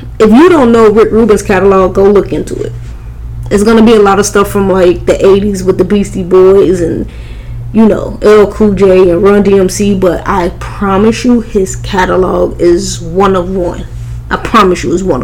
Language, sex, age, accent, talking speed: English, female, 20-39, American, 195 wpm